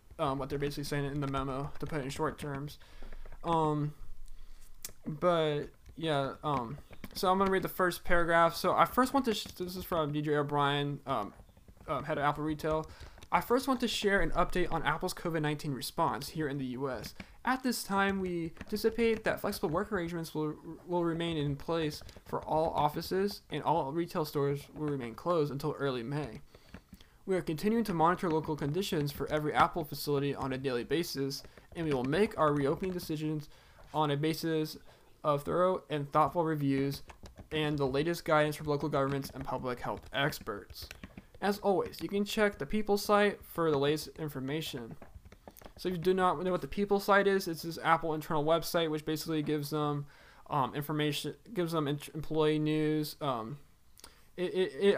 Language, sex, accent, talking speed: English, male, American, 180 wpm